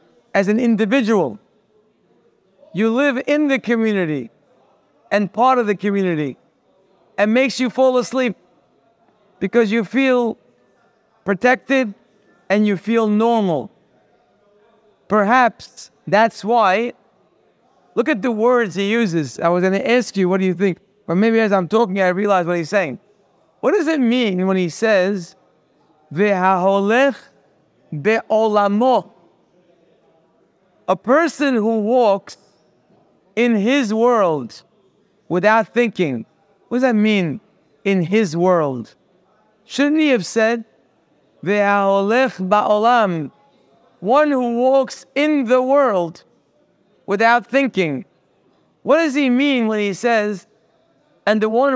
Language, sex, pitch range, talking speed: English, male, 195-245 Hz, 120 wpm